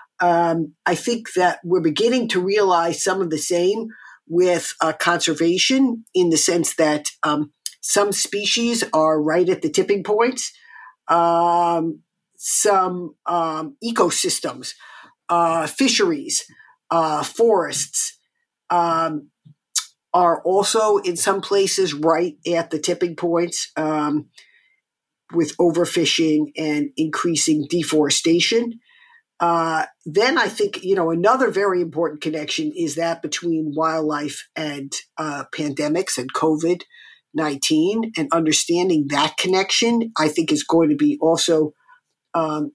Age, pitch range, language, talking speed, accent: 50-69, 160-220 Hz, German, 120 wpm, American